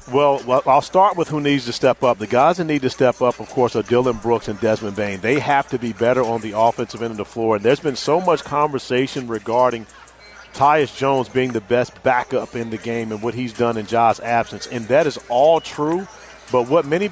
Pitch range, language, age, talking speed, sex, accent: 120-155 Hz, English, 40-59, 235 wpm, male, American